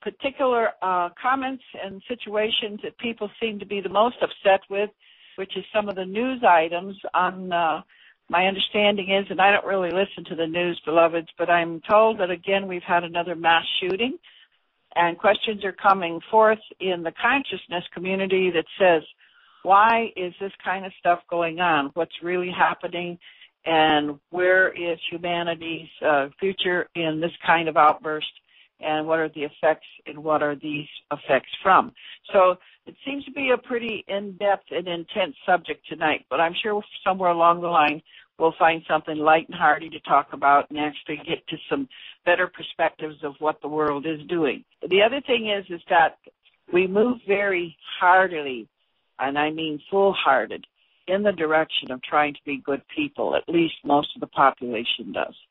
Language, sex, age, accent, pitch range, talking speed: English, female, 60-79, American, 160-200 Hz, 175 wpm